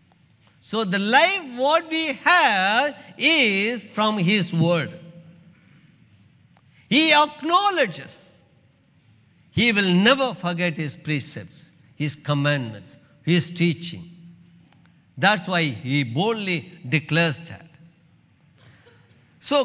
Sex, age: male, 50-69